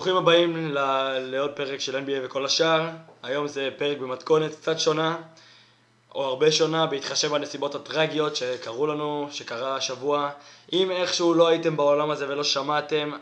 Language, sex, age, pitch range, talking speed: Hebrew, male, 20-39, 140-170 Hz, 145 wpm